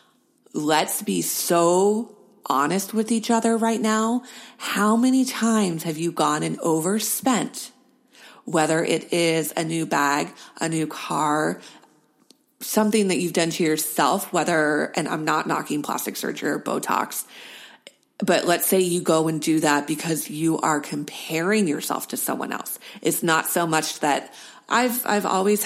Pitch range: 155-210 Hz